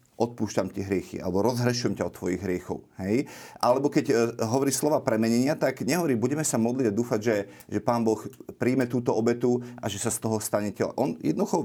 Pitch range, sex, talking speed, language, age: 105-125 Hz, male, 195 wpm, Slovak, 30-49